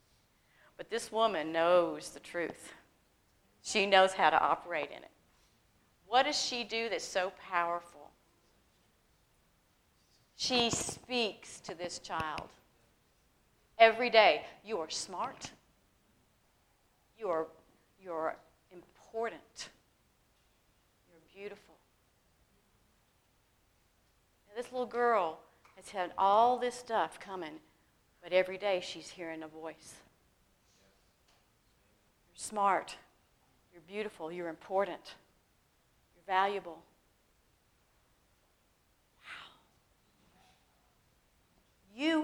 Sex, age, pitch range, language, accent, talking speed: female, 40-59, 165-225 Hz, English, American, 90 wpm